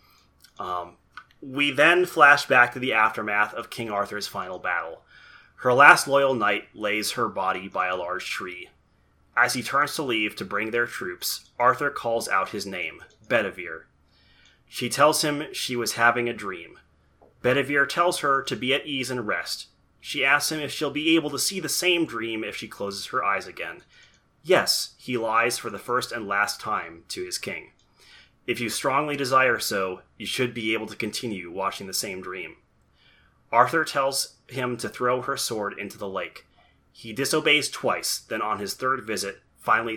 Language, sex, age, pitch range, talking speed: English, male, 30-49, 100-140 Hz, 180 wpm